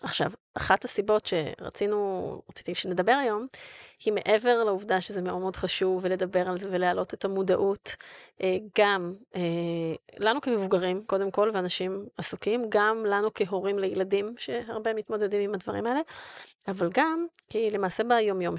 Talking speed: 135 wpm